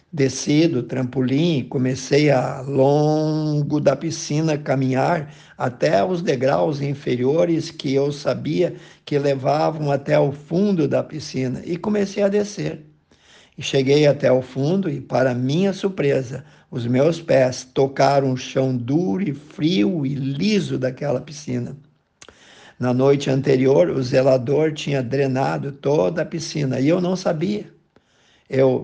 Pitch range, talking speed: 135-155 Hz, 135 wpm